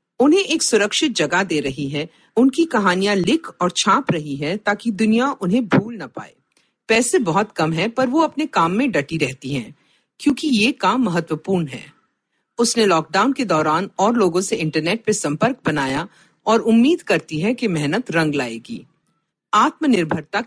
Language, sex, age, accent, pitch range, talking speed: Hindi, female, 50-69, native, 170-270 Hz, 165 wpm